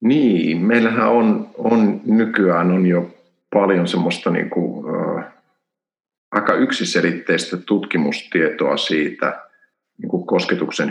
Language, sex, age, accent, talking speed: Finnish, male, 50-69, native, 75 wpm